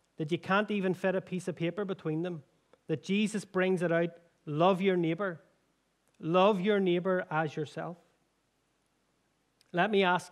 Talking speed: 155 wpm